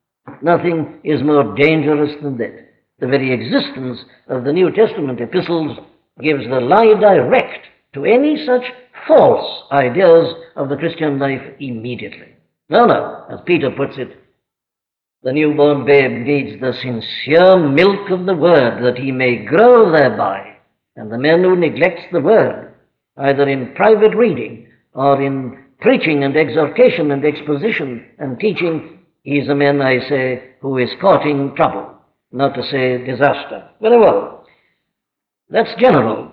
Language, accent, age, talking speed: English, Indian, 60-79, 145 wpm